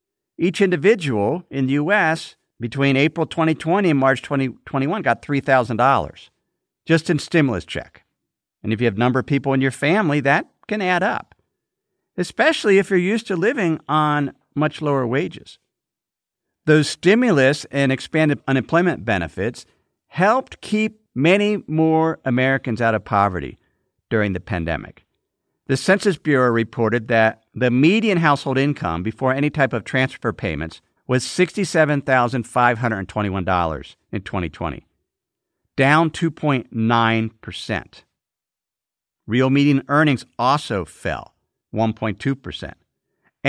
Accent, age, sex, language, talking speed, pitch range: American, 50-69, male, English, 120 wpm, 115-160 Hz